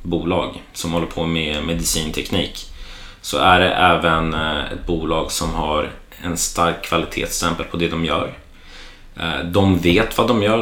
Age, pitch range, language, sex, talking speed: 30-49, 85-95 Hz, Swedish, male, 145 wpm